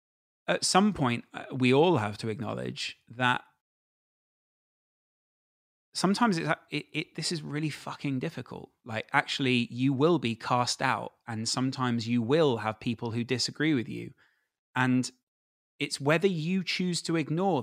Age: 30-49